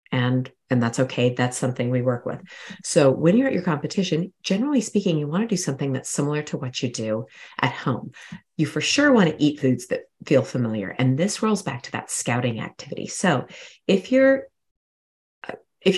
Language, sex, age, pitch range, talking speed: English, female, 30-49, 125-175 Hz, 195 wpm